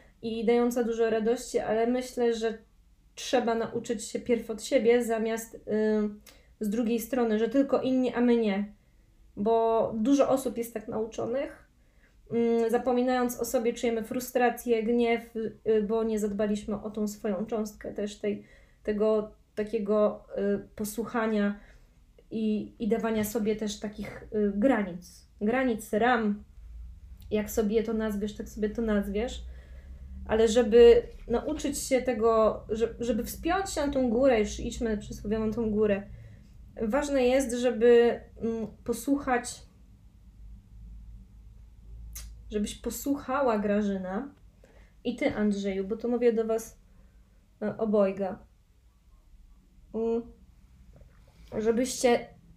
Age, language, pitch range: 20-39, Polish, 210-240 Hz